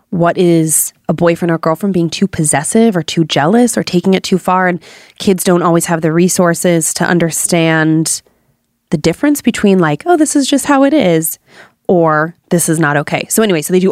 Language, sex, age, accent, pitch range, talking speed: English, female, 20-39, American, 165-195 Hz, 205 wpm